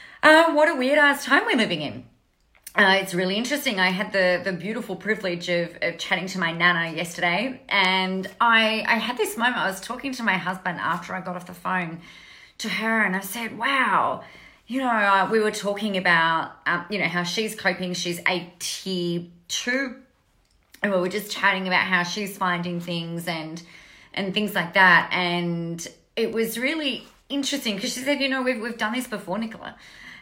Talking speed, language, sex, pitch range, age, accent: 195 wpm, English, female, 175-220 Hz, 30-49, Australian